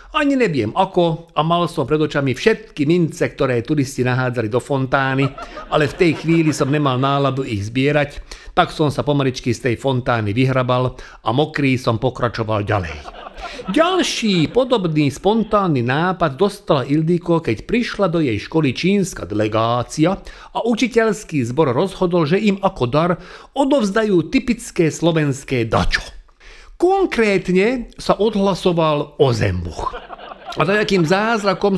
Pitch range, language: 140-205 Hz, Slovak